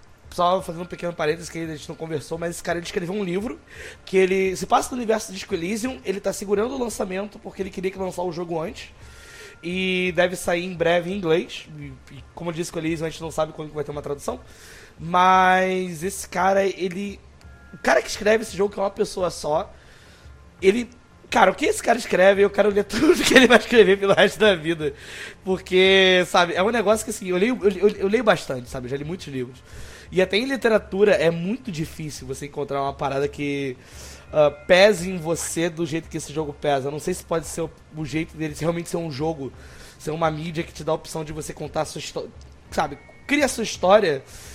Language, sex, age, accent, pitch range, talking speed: Portuguese, male, 20-39, Brazilian, 155-205 Hz, 230 wpm